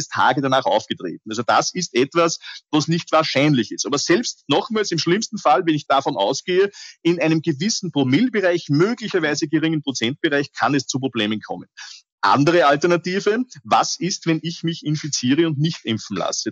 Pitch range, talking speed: 135-170 Hz, 165 wpm